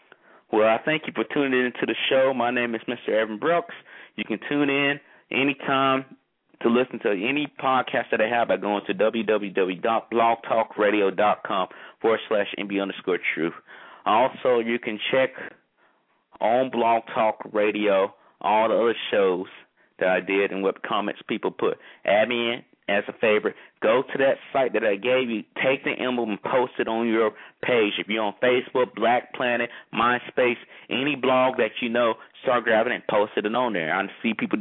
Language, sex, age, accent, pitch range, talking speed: English, male, 30-49, American, 105-125 Hz, 180 wpm